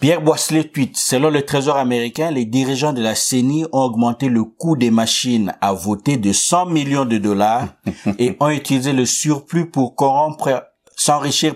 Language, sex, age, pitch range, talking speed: French, male, 50-69, 110-140 Hz, 170 wpm